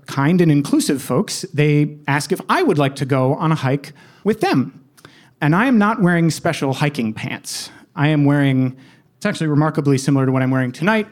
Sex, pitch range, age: male, 140-190 Hz, 30-49